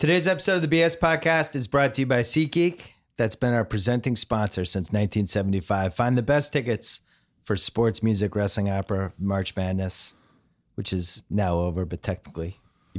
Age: 30-49